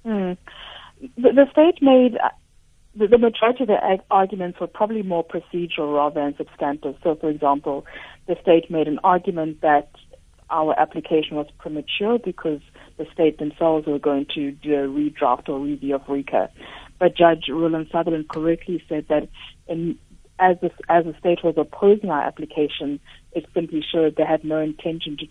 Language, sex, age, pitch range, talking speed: English, female, 60-79, 150-175 Hz, 170 wpm